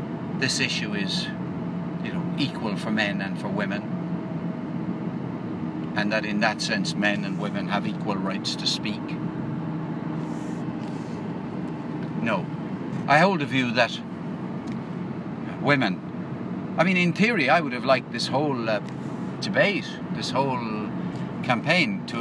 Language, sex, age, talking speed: English, male, 50-69, 125 wpm